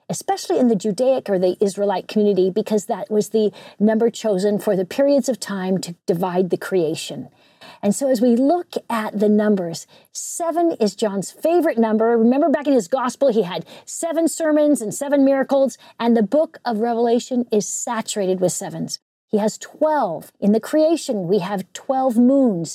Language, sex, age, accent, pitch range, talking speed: English, female, 50-69, American, 210-275 Hz, 175 wpm